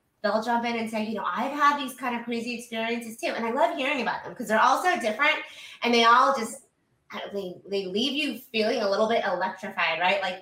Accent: American